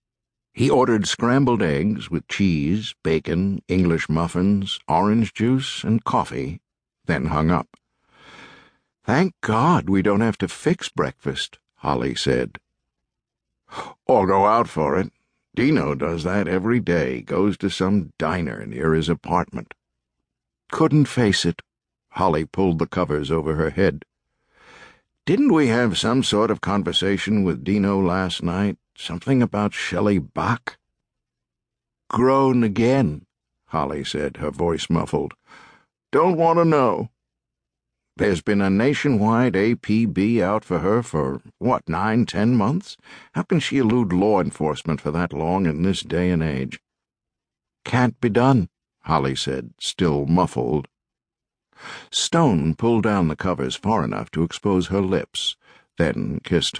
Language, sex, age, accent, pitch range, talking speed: English, male, 60-79, American, 80-110 Hz, 135 wpm